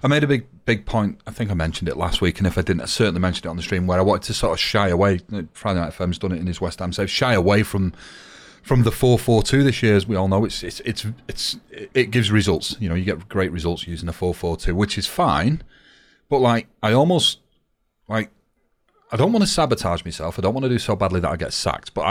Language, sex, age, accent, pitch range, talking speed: English, male, 30-49, British, 85-110 Hz, 270 wpm